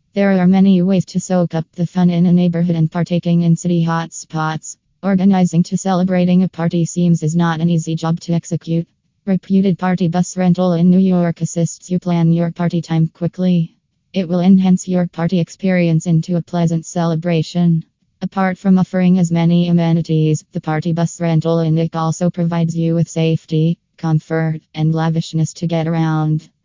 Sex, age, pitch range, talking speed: female, 20-39, 160-175 Hz, 175 wpm